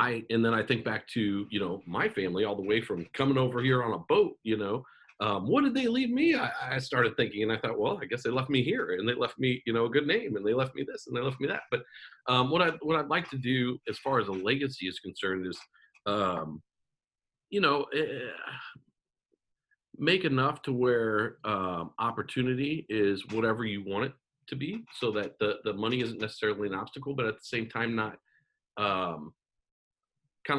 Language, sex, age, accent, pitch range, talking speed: English, male, 40-59, American, 100-135 Hz, 220 wpm